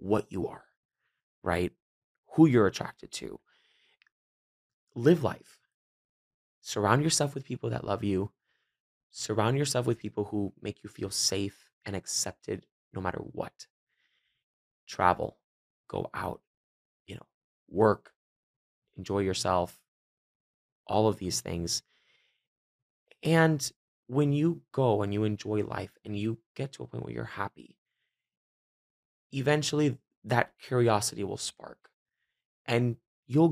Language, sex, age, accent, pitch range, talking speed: English, male, 20-39, American, 105-135 Hz, 120 wpm